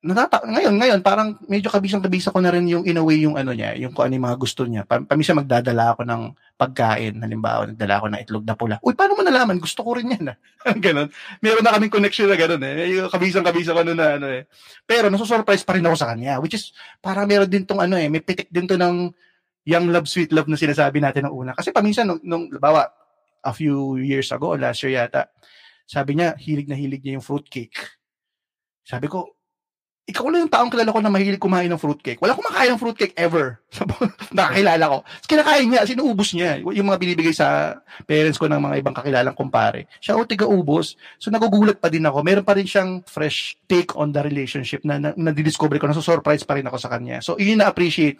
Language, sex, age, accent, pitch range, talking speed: Filipino, male, 20-39, native, 135-190 Hz, 210 wpm